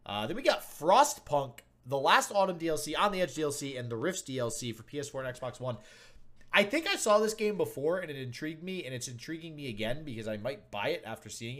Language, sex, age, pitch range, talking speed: English, male, 30-49, 110-155 Hz, 235 wpm